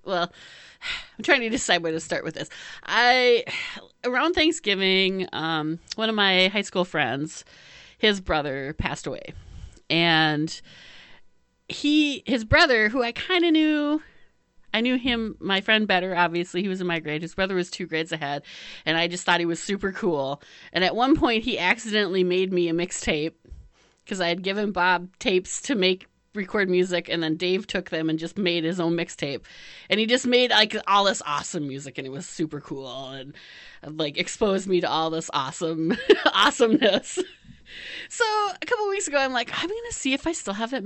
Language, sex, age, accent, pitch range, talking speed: English, female, 30-49, American, 165-230 Hz, 190 wpm